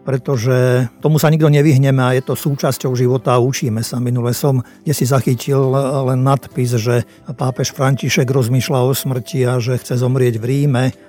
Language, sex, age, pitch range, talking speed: Slovak, male, 50-69, 125-145 Hz, 175 wpm